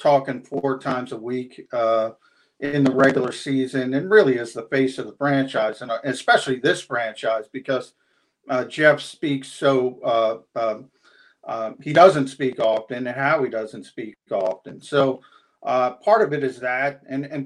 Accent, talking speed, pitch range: American, 165 wpm, 130-150 Hz